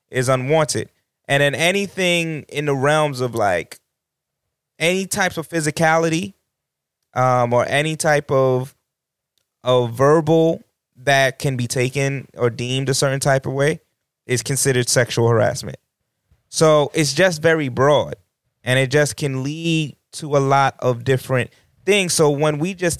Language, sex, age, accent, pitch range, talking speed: English, male, 20-39, American, 125-150 Hz, 145 wpm